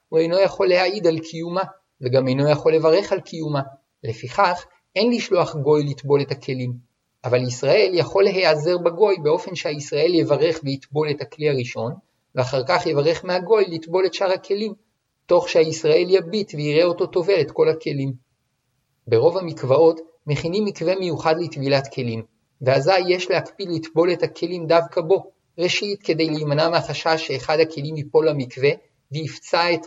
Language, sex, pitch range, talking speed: Hebrew, male, 140-180 Hz, 145 wpm